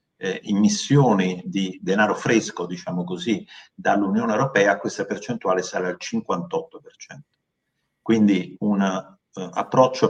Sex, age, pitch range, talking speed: male, 50-69, 100-145 Hz, 105 wpm